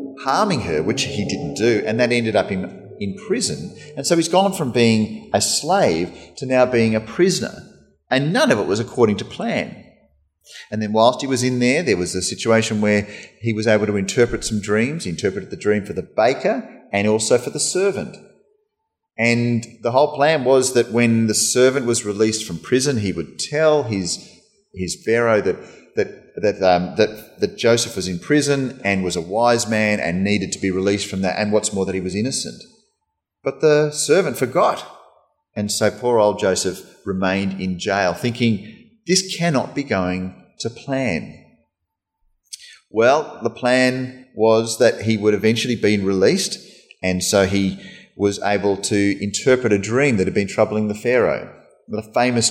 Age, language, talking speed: 30-49, English, 180 wpm